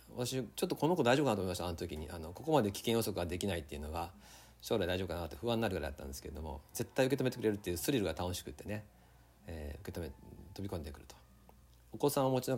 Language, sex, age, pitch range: Japanese, male, 40-59, 80-125 Hz